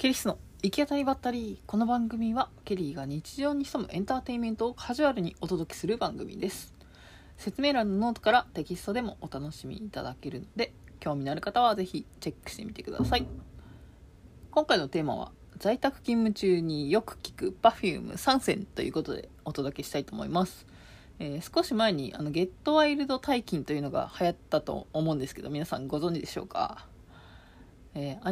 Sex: female